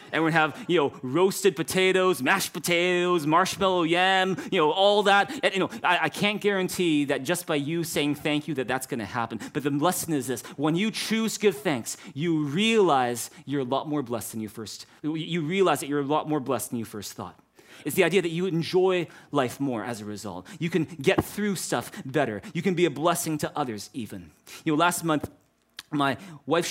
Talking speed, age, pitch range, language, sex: 220 wpm, 30-49, 135-180 Hz, English, male